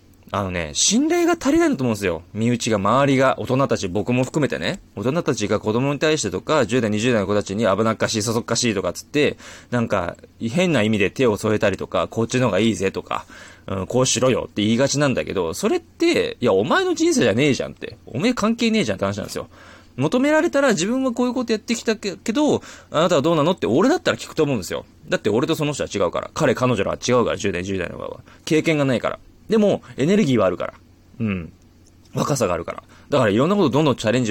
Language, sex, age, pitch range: Japanese, male, 20-39, 105-155 Hz